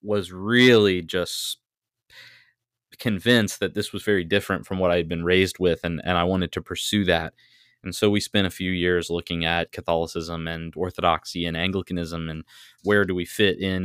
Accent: American